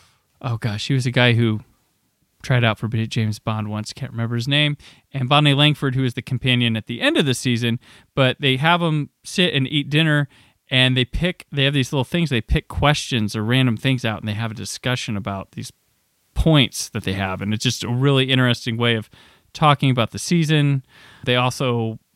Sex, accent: male, American